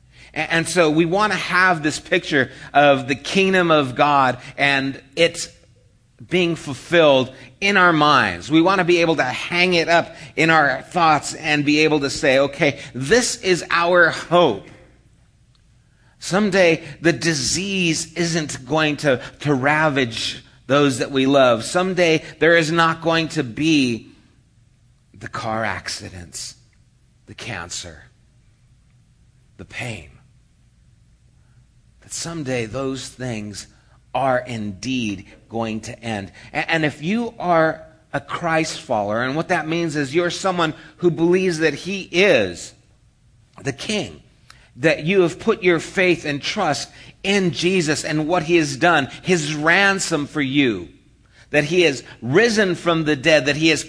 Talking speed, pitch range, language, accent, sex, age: 140 wpm, 125-170 Hz, English, American, male, 40-59